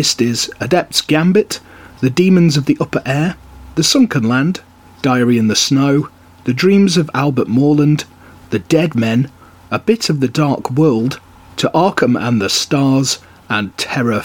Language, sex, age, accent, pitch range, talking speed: English, male, 30-49, British, 120-170 Hz, 160 wpm